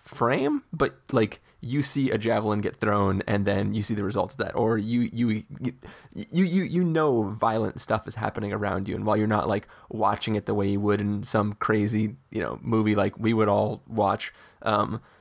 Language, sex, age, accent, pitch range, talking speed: English, male, 30-49, American, 105-130 Hz, 210 wpm